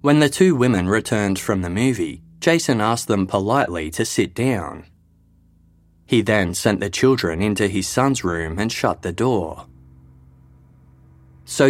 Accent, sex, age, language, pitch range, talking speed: Australian, male, 20-39, English, 85-115 Hz, 150 wpm